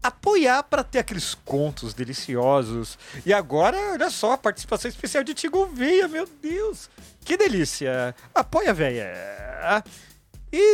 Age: 40-59